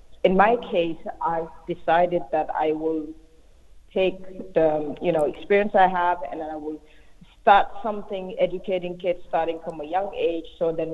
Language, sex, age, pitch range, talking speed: English, female, 30-49, 155-180 Hz, 160 wpm